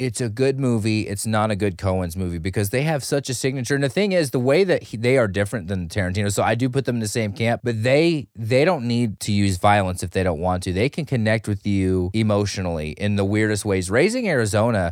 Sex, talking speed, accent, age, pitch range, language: male, 255 wpm, American, 30-49, 100-135 Hz, English